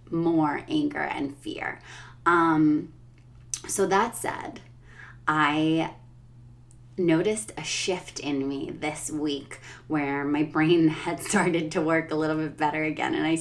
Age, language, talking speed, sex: 30-49, English, 135 wpm, female